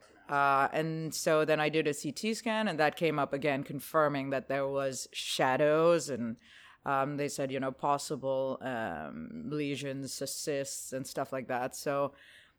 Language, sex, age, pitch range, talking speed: English, female, 30-49, 135-175 Hz, 160 wpm